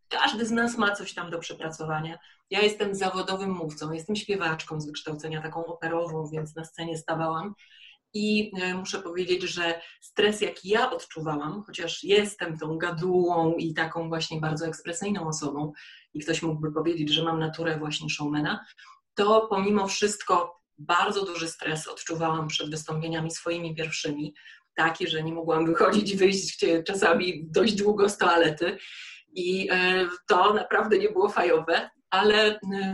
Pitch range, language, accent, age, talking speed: 160-205 Hz, Polish, native, 30-49, 145 wpm